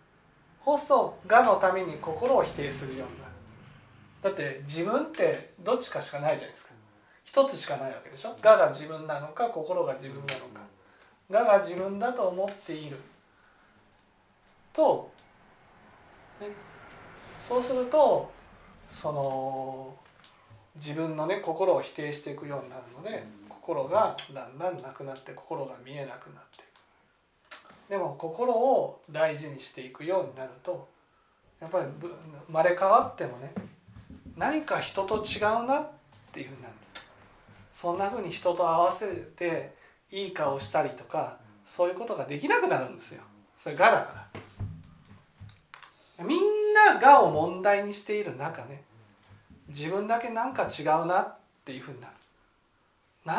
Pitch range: 135-205 Hz